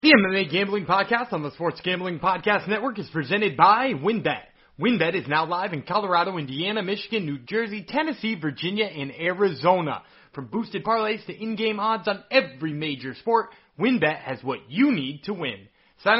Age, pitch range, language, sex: 30-49, 160-235 Hz, English, male